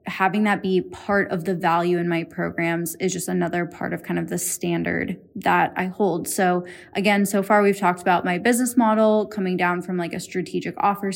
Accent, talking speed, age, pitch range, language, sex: American, 210 wpm, 10-29, 175-200 Hz, English, female